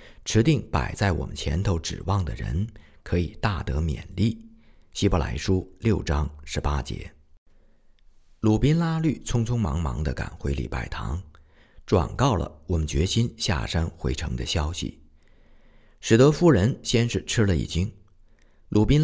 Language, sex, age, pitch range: Chinese, male, 50-69, 75-115 Hz